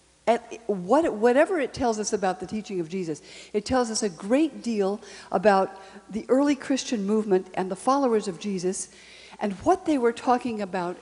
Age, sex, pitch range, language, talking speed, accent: 60-79, female, 190-265 Hz, English, 170 wpm, American